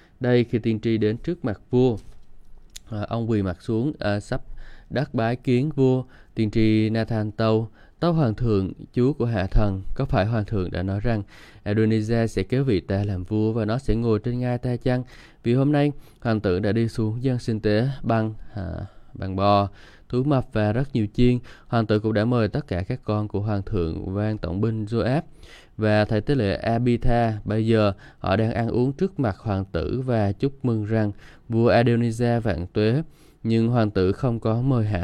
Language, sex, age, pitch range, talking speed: Vietnamese, male, 20-39, 105-120 Hz, 200 wpm